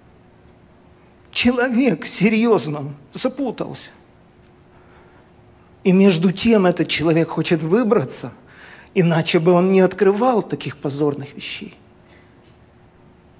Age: 50-69